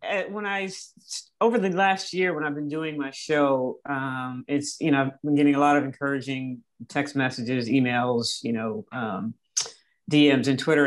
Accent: American